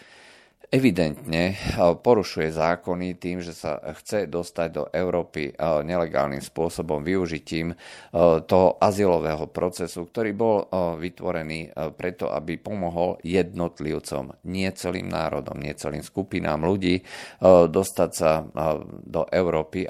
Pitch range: 80-95 Hz